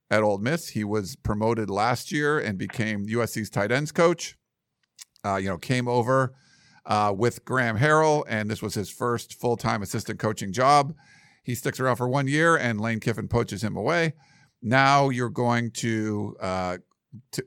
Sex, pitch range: male, 110-135 Hz